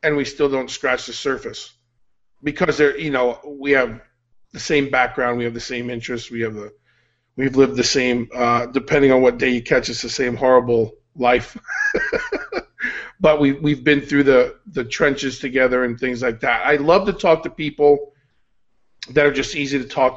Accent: American